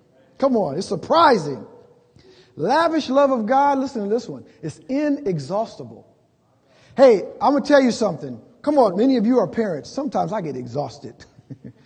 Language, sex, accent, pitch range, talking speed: English, male, American, 160-220 Hz, 160 wpm